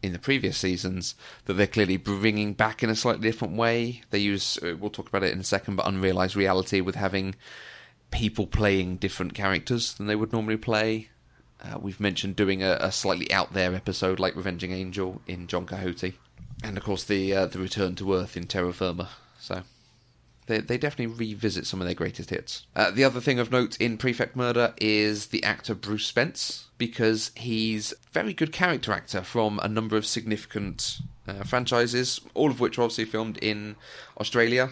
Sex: male